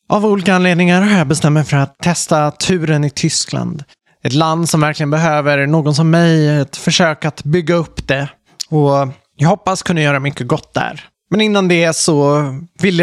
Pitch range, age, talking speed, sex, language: 140-165 Hz, 20-39, 185 wpm, male, Swedish